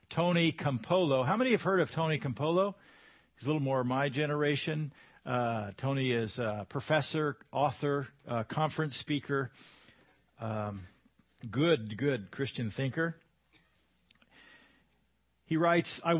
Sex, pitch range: male, 130-185 Hz